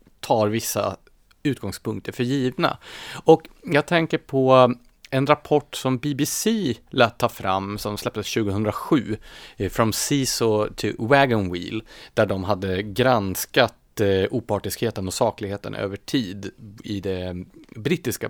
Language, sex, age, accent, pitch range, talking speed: Swedish, male, 30-49, Norwegian, 100-130 Hz, 120 wpm